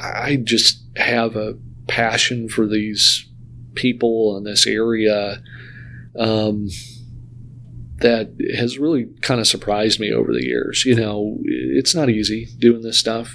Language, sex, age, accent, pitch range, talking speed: English, male, 40-59, American, 110-125 Hz, 135 wpm